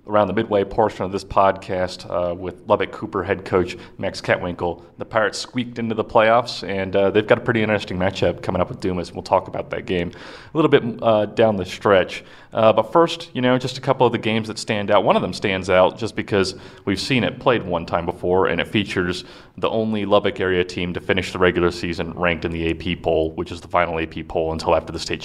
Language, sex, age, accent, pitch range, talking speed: English, male, 30-49, American, 85-110 Hz, 240 wpm